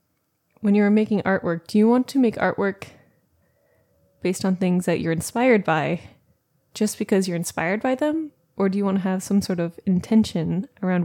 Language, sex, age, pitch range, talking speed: English, female, 20-39, 175-210 Hz, 185 wpm